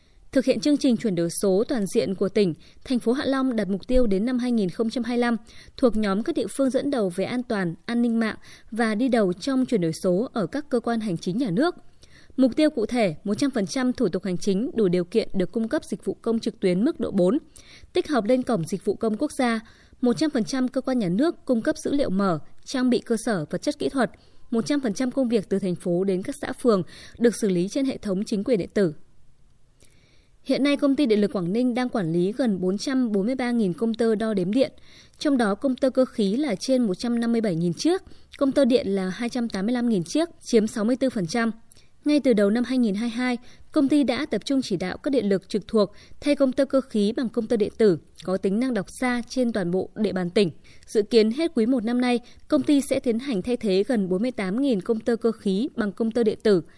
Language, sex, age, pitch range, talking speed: Vietnamese, female, 20-39, 200-260 Hz, 230 wpm